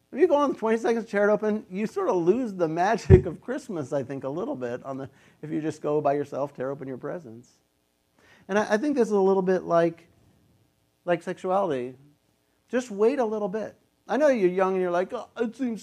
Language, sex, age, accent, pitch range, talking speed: English, male, 50-69, American, 130-195 Hz, 230 wpm